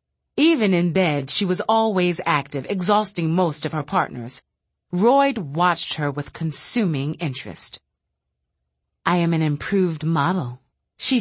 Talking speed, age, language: 130 wpm, 30-49, English